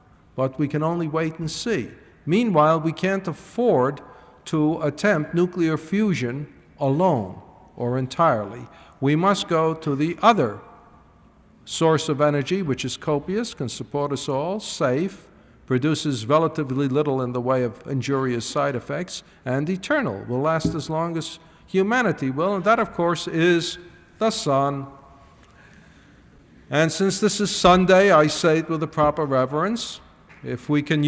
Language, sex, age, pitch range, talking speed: English, male, 50-69, 135-180 Hz, 145 wpm